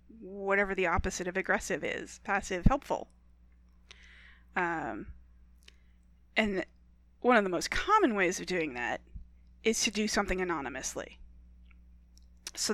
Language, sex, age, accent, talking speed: English, female, 30-49, American, 120 wpm